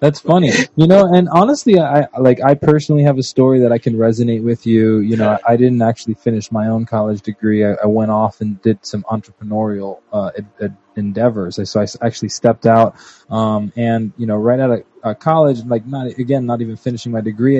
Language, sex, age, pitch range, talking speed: English, male, 20-39, 110-125 Hz, 215 wpm